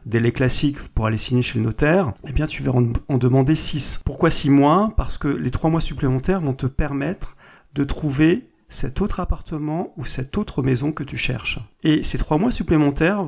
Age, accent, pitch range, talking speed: 40-59, French, 135-175 Hz, 200 wpm